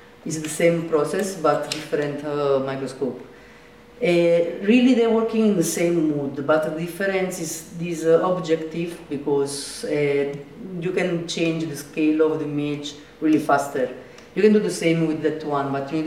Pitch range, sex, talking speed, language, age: 150-180 Hz, female, 170 wpm, German, 30-49